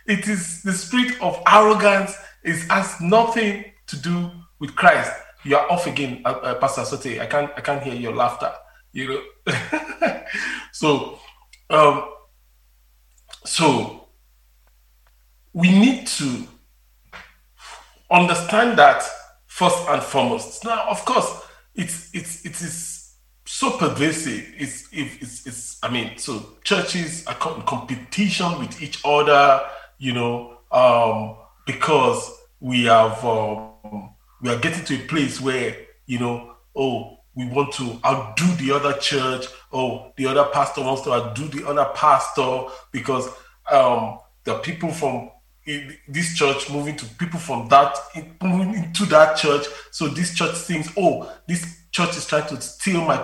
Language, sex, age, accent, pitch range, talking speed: English, male, 40-59, Nigerian, 130-175 Hz, 140 wpm